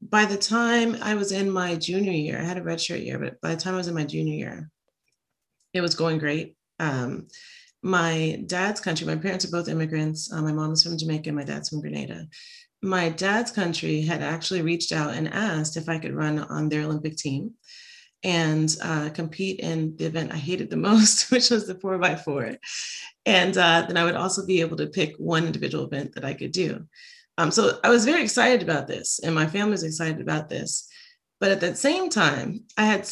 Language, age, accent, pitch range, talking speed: English, 30-49, American, 160-215 Hz, 215 wpm